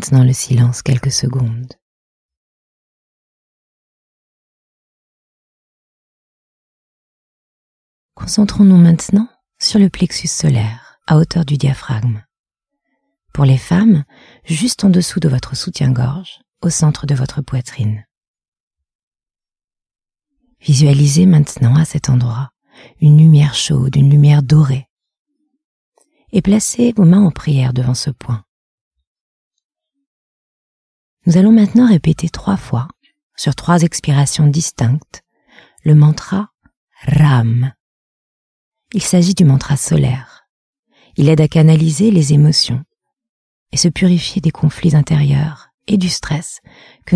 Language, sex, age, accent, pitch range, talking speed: French, female, 40-59, French, 130-175 Hz, 105 wpm